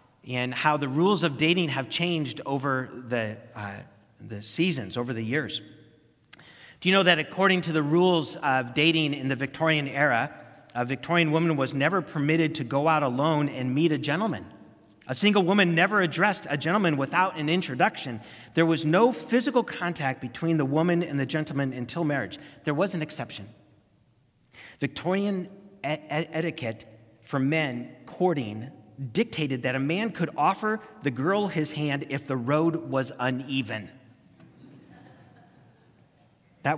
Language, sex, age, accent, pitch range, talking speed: English, male, 40-59, American, 120-155 Hz, 150 wpm